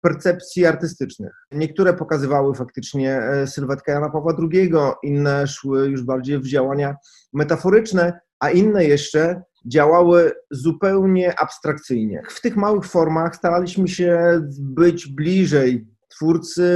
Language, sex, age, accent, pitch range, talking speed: Polish, male, 30-49, native, 140-170 Hz, 110 wpm